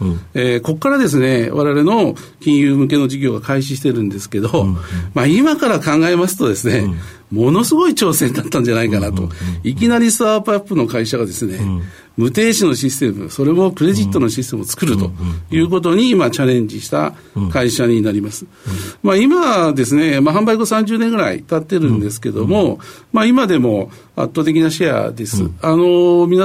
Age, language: 50-69, Japanese